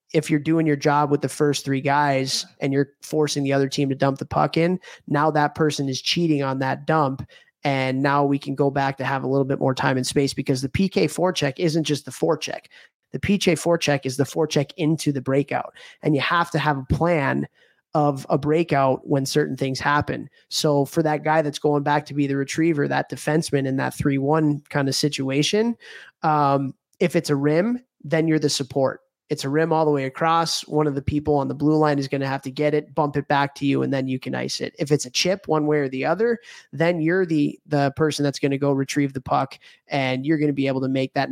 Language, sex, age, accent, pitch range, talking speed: English, male, 30-49, American, 135-155 Hz, 250 wpm